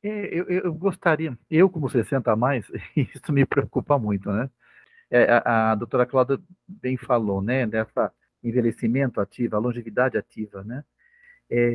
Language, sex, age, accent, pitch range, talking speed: Portuguese, male, 50-69, Brazilian, 125-180 Hz, 155 wpm